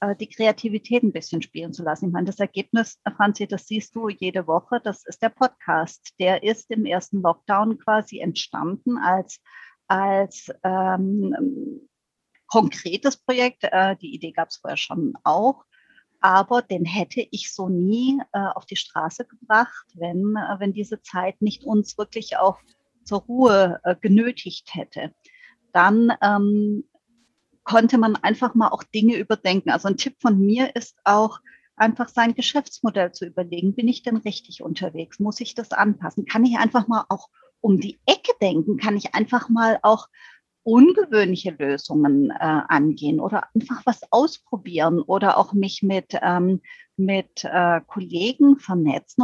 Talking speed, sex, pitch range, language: 155 wpm, female, 185-235 Hz, German